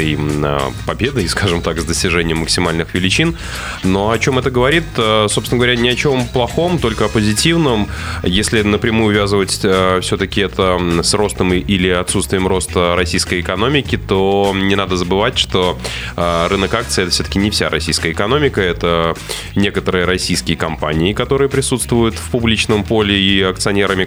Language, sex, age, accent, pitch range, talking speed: Russian, male, 20-39, native, 85-105 Hz, 140 wpm